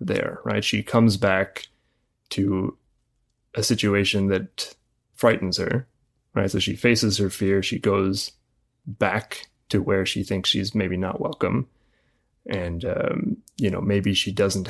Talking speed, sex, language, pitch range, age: 145 wpm, male, English, 95-105 Hz, 20-39